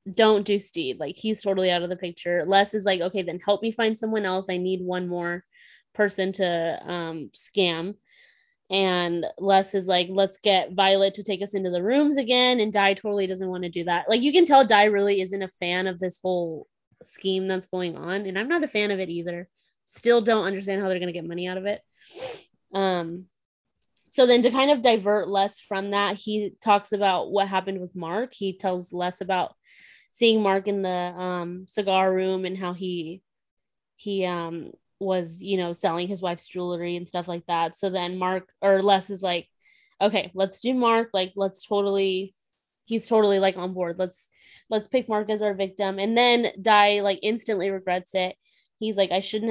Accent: American